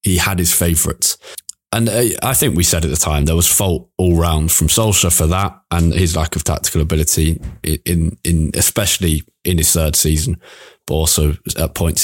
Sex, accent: male, British